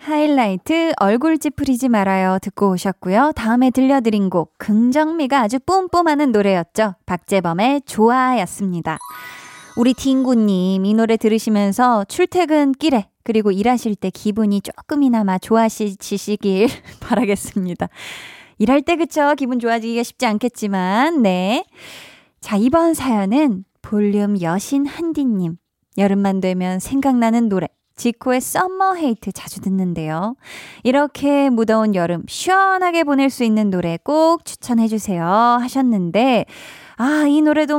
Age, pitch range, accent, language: 20-39, 200-275 Hz, native, Korean